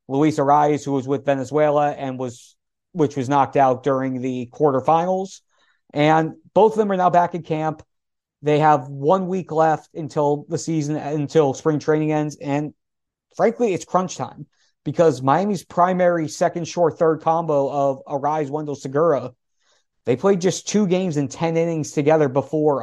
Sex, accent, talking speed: male, American, 165 wpm